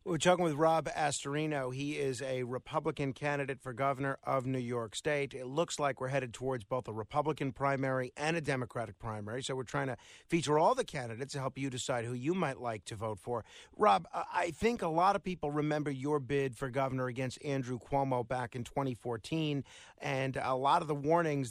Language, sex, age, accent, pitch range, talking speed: English, male, 50-69, American, 130-165 Hz, 205 wpm